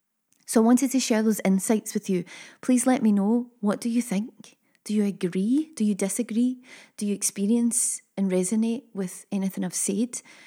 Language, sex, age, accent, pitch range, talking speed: English, female, 20-39, British, 200-245 Hz, 185 wpm